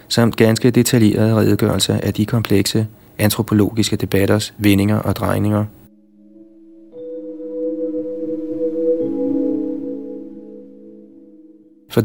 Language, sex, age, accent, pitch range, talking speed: Danish, male, 30-49, native, 100-115 Hz, 65 wpm